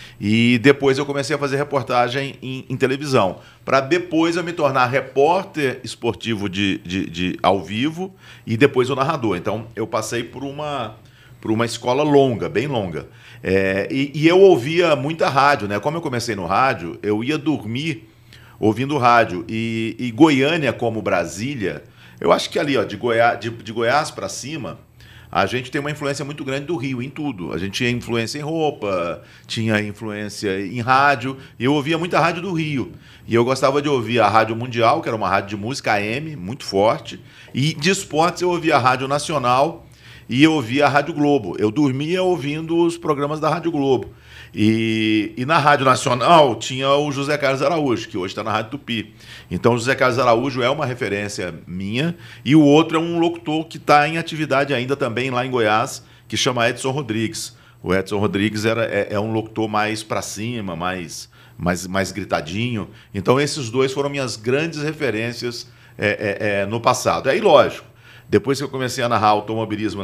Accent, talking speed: Brazilian, 185 wpm